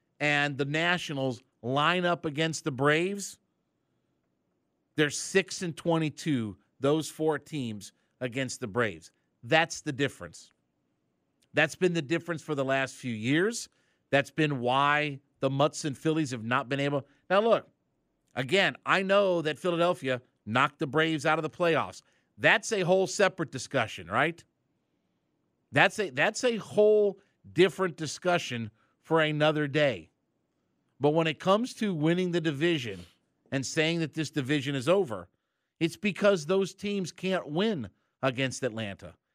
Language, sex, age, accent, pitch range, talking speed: English, male, 50-69, American, 135-175 Hz, 145 wpm